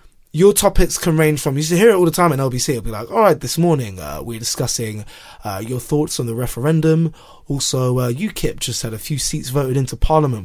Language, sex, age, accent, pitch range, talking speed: English, male, 20-39, British, 125-165 Hz, 225 wpm